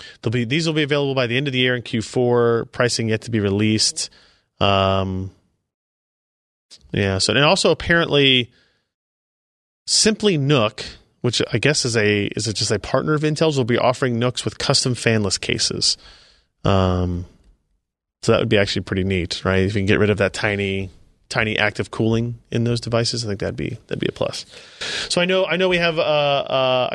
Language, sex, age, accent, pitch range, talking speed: English, male, 30-49, American, 100-135 Hz, 190 wpm